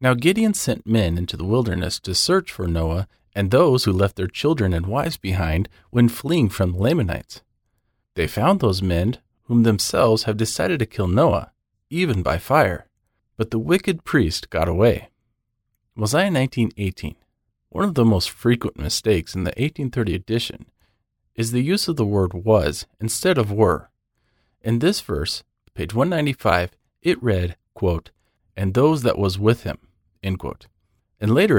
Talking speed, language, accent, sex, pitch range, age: 160 wpm, English, American, male, 95-125 Hz, 40-59